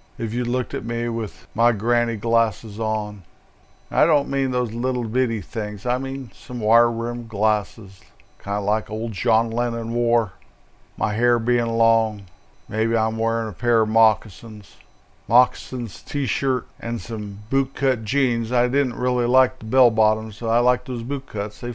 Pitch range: 110-130 Hz